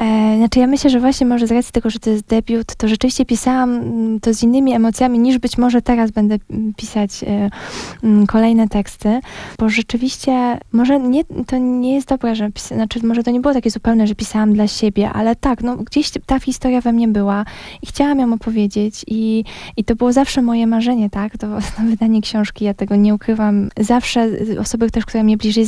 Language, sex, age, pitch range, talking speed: Polish, female, 10-29, 215-250 Hz, 205 wpm